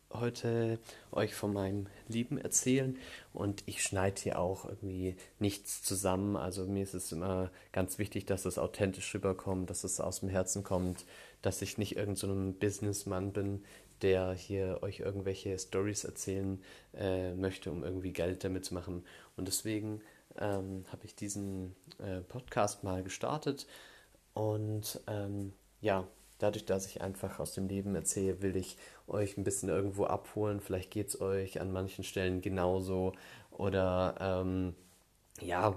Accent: German